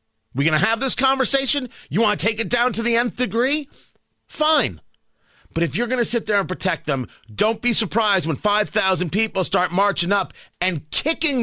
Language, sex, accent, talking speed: English, male, American, 200 wpm